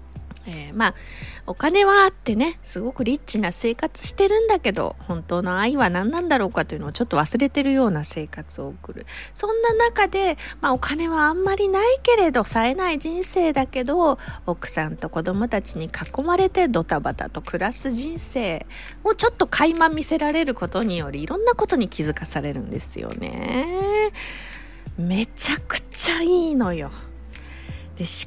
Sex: female